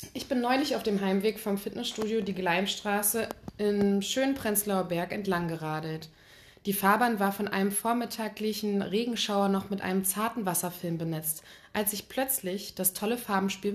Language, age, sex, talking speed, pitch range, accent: German, 20-39, female, 145 wpm, 180-215 Hz, German